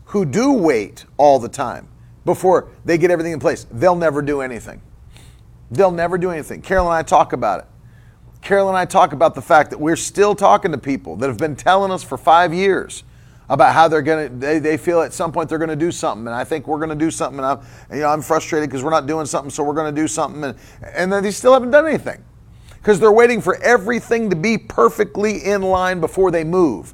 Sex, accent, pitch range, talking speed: male, American, 150-195 Hz, 235 wpm